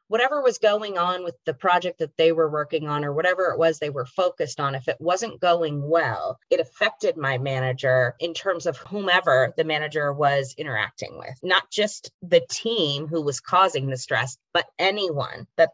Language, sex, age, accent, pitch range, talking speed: English, female, 30-49, American, 150-180 Hz, 190 wpm